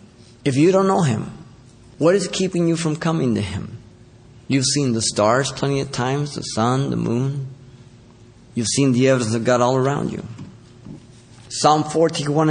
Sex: male